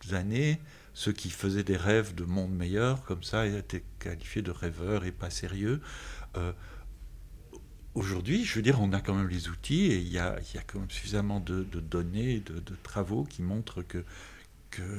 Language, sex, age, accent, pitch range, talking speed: French, male, 60-79, French, 85-105 Hz, 195 wpm